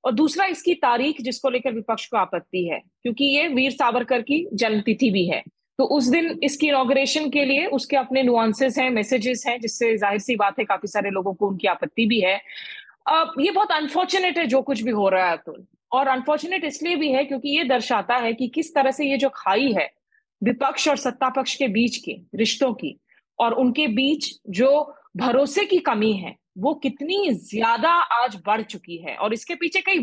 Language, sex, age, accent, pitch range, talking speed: Hindi, female, 20-39, native, 235-295 Hz, 200 wpm